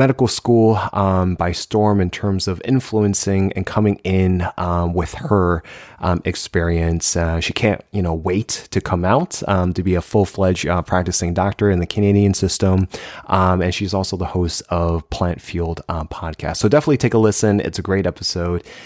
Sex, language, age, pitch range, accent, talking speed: male, English, 20-39, 95-115 Hz, American, 185 wpm